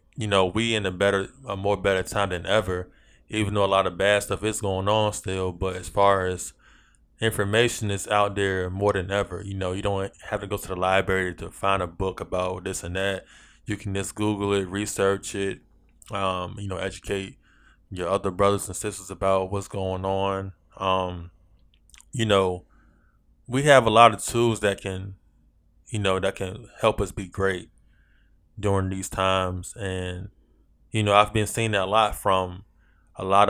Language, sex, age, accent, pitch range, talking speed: English, male, 20-39, American, 90-100 Hz, 190 wpm